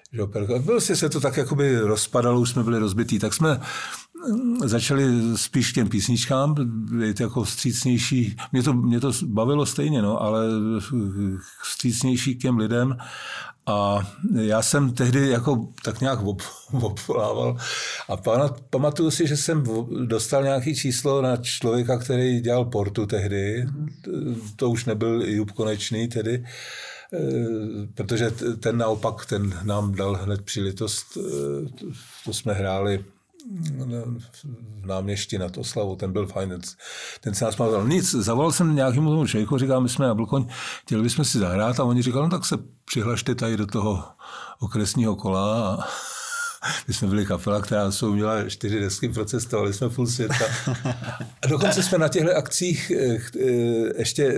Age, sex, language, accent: 50-69, male, Czech, native